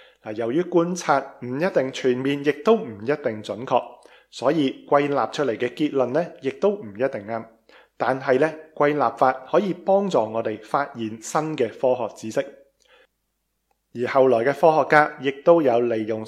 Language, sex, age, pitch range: Chinese, male, 20-39, 120-155 Hz